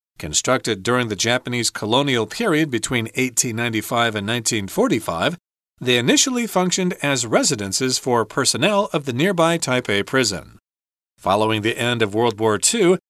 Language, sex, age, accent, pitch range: Chinese, male, 40-59, American, 120-175 Hz